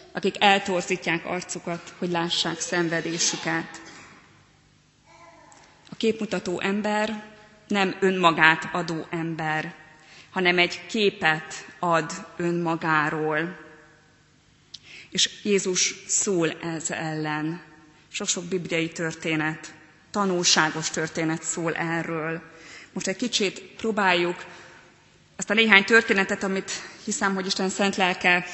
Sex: female